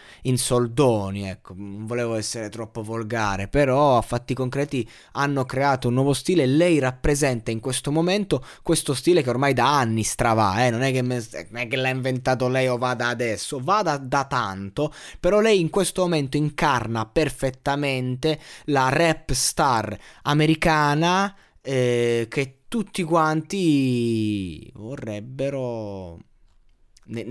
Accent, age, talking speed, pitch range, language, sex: native, 20-39, 135 wpm, 115-145 Hz, Italian, male